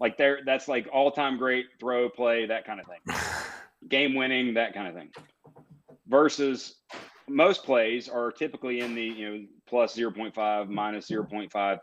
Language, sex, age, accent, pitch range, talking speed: English, male, 40-59, American, 105-130 Hz, 165 wpm